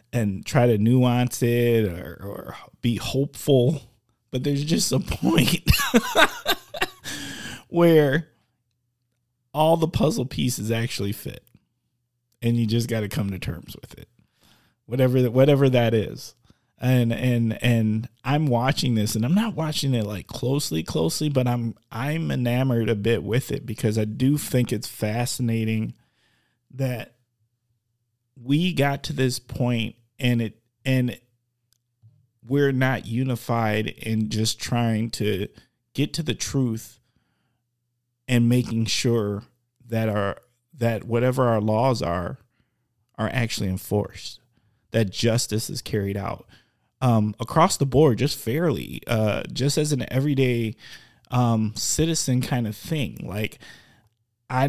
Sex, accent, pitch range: male, American, 110-130 Hz